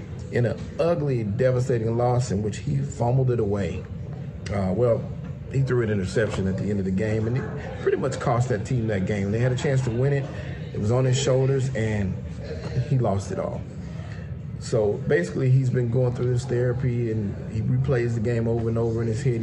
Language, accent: English, American